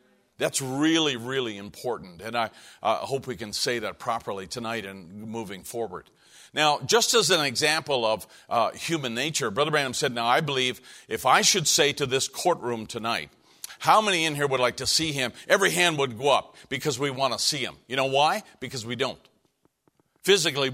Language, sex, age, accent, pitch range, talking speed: English, male, 50-69, American, 125-170 Hz, 195 wpm